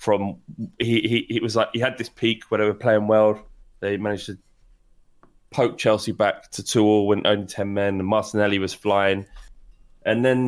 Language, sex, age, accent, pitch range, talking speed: English, male, 20-39, British, 105-135 Hz, 195 wpm